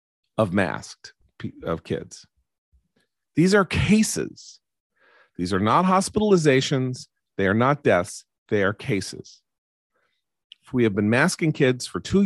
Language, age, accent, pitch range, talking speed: English, 40-59, American, 105-150 Hz, 125 wpm